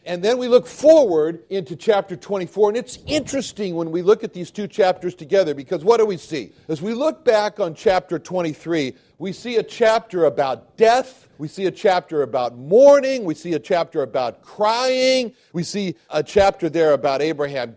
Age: 50-69